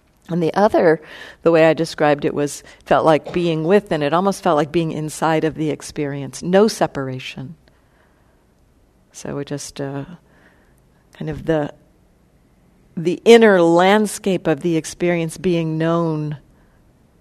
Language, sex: English, female